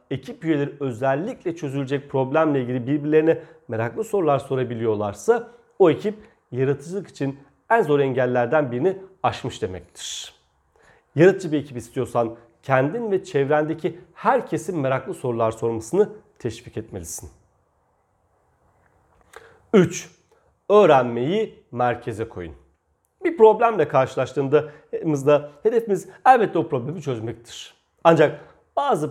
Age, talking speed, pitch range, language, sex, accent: 40-59, 95 wpm, 120-175 Hz, Turkish, male, native